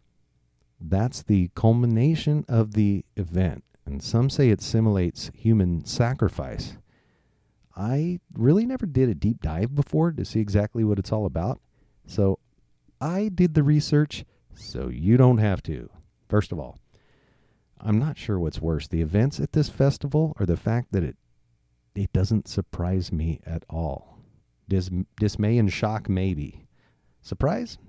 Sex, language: male, English